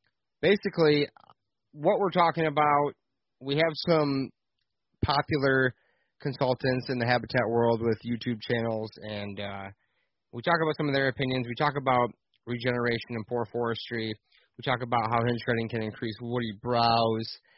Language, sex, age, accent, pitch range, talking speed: English, male, 20-39, American, 115-135 Hz, 145 wpm